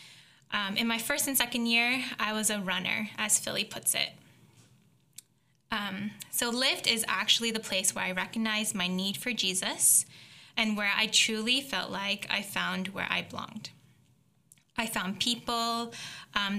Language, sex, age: English, female, 10-29